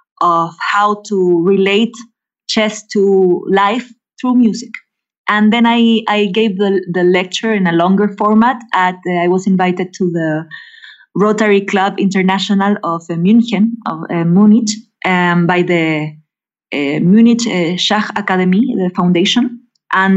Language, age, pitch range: English, 20-39, 180-215 Hz